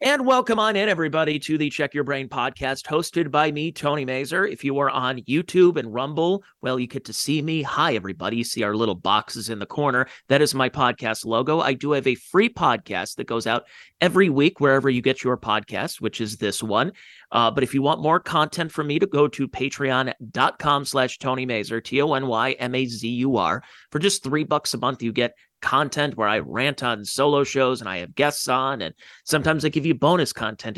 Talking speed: 210 wpm